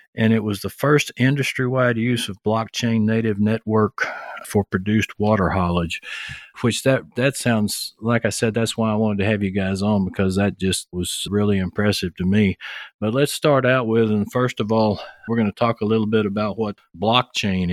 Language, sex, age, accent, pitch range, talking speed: English, male, 50-69, American, 100-115 Hz, 195 wpm